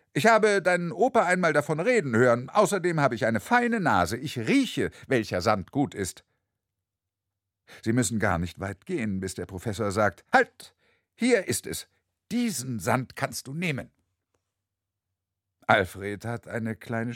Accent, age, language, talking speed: German, 60-79, German, 150 wpm